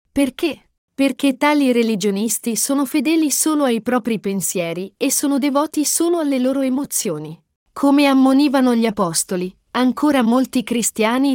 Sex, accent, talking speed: female, native, 125 wpm